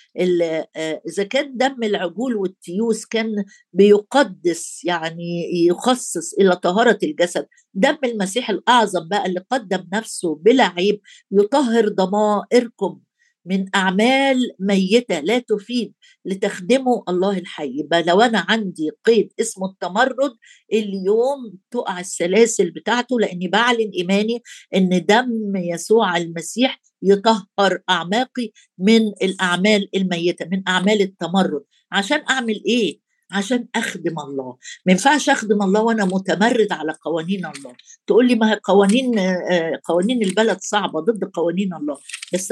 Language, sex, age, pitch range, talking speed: Arabic, female, 50-69, 180-235 Hz, 115 wpm